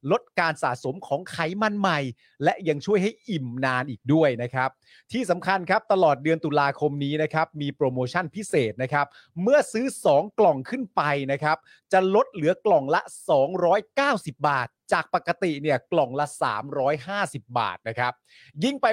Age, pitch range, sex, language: 30-49, 135-190 Hz, male, Thai